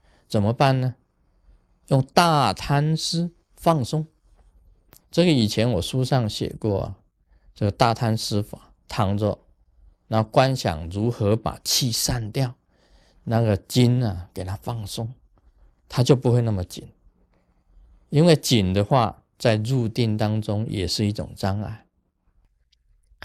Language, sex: Chinese, male